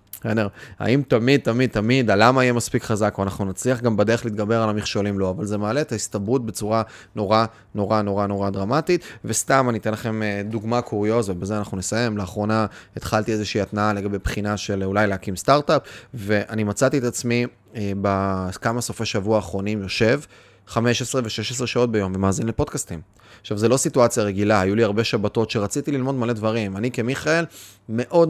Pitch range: 105-130 Hz